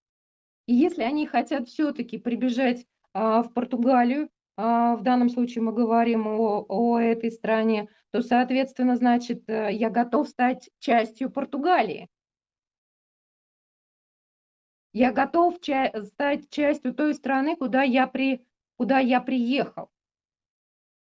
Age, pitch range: 20-39, 235-285 Hz